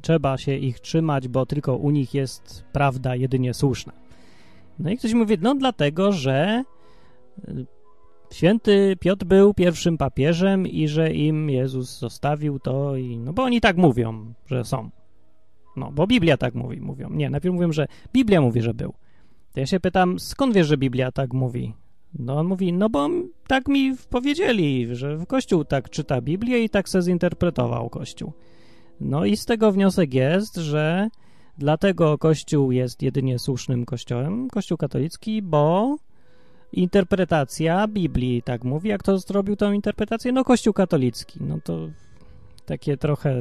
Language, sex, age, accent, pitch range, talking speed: Polish, male, 30-49, native, 130-195 Hz, 155 wpm